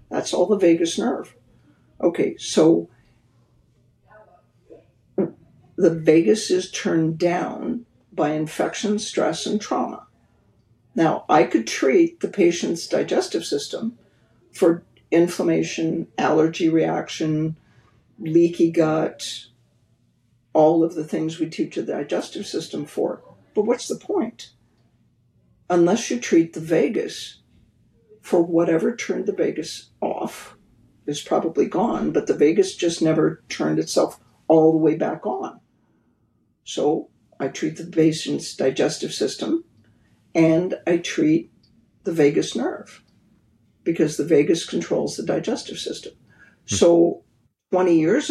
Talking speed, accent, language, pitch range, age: 115 wpm, American, English, 155-210 Hz, 60-79